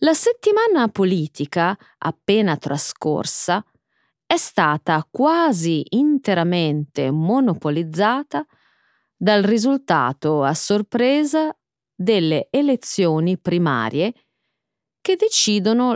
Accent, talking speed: native, 70 wpm